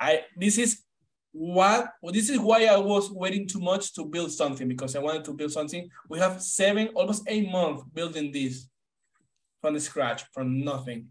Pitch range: 150-205 Hz